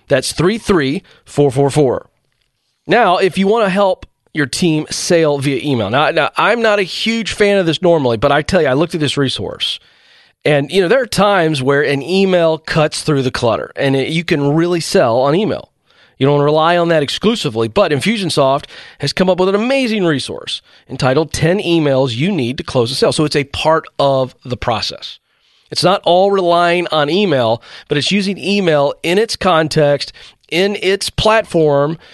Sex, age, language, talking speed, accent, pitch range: male, 30-49, English, 185 wpm, American, 140-185 Hz